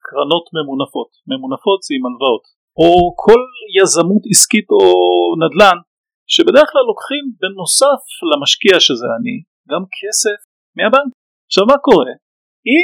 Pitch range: 170-265 Hz